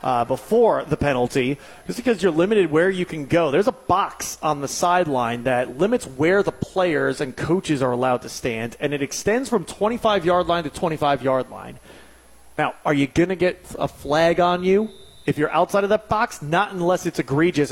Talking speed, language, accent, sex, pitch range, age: 200 wpm, English, American, male, 135-175 Hz, 30-49